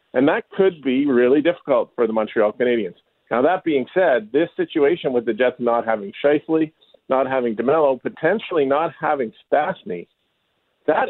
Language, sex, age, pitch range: English, male, 40-59, 125-155 Hz